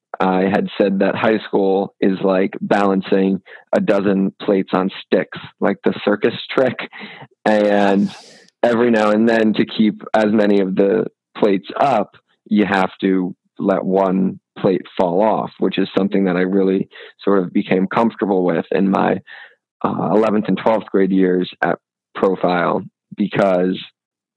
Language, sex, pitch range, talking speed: English, male, 95-110 Hz, 150 wpm